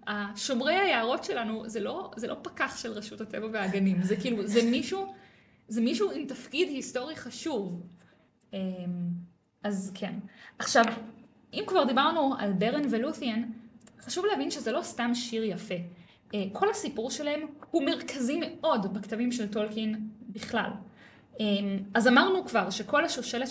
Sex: female